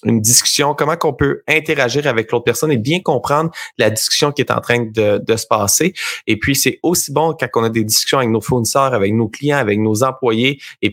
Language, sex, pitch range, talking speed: French, male, 110-135 Hz, 230 wpm